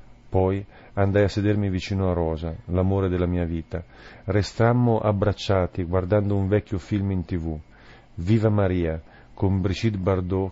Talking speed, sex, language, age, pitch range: 135 wpm, male, Italian, 40-59, 85-100 Hz